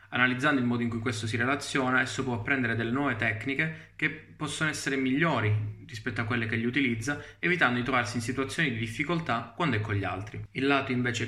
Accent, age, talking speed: native, 20-39, 205 wpm